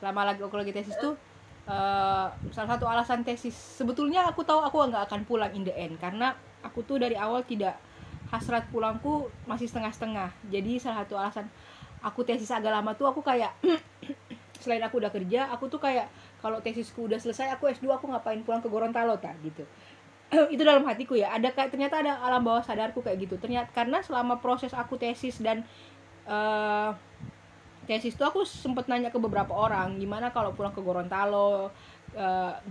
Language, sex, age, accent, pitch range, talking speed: Indonesian, female, 20-39, native, 200-245 Hz, 180 wpm